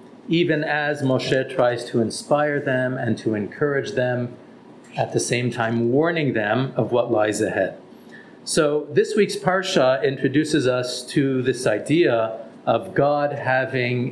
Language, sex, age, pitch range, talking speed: English, male, 40-59, 130-165 Hz, 140 wpm